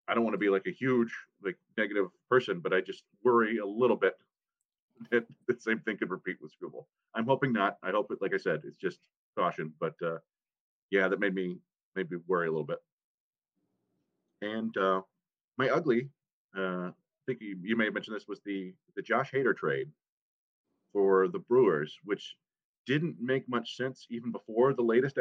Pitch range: 100-150 Hz